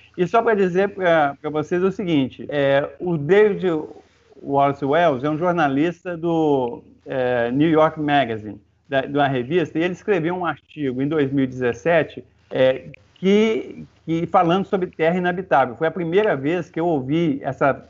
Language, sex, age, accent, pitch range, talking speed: Portuguese, male, 40-59, Brazilian, 140-185 Hz, 130 wpm